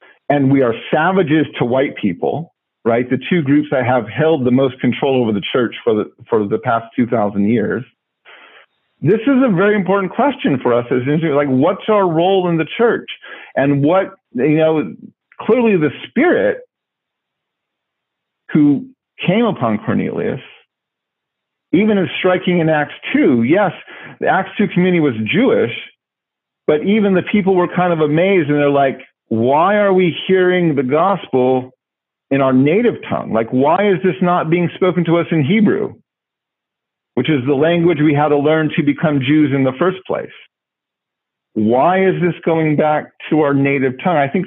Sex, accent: male, American